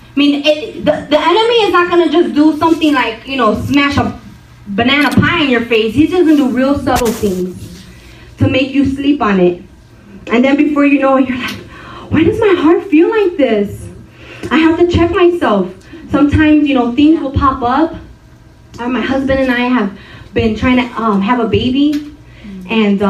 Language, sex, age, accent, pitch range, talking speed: English, female, 20-39, American, 220-290 Hz, 195 wpm